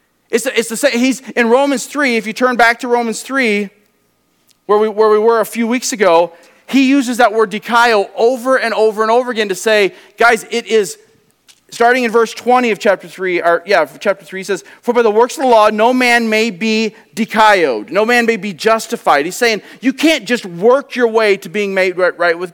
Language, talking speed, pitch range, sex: English, 220 wpm, 215-255 Hz, male